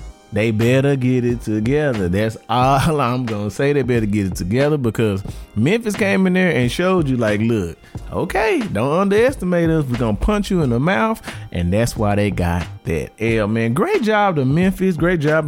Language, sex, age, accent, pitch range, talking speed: English, male, 30-49, American, 110-170 Hz, 200 wpm